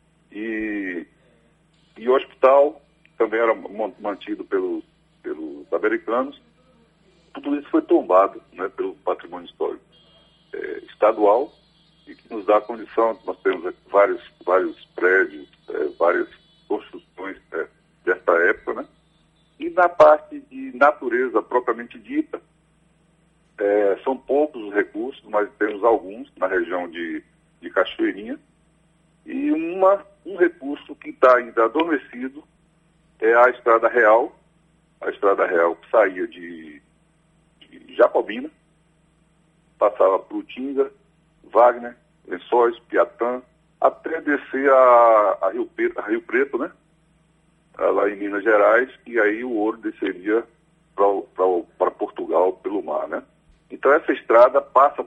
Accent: Brazilian